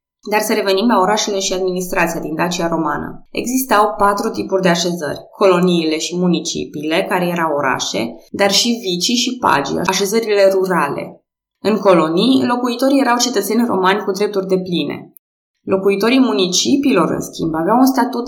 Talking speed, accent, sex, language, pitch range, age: 150 wpm, native, female, Romanian, 180-225 Hz, 20-39